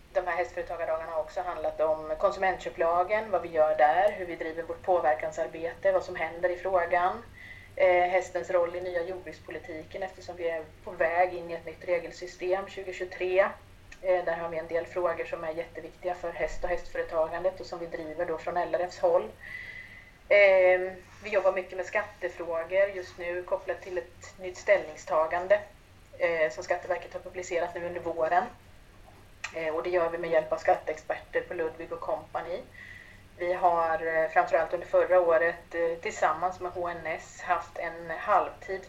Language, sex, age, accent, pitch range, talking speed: Swedish, female, 30-49, native, 160-180 Hz, 155 wpm